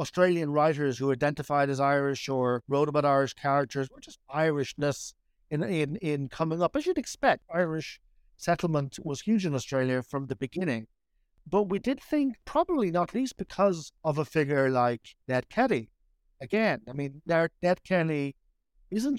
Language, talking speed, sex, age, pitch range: English, 160 wpm, male, 60-79, 135-180 Hz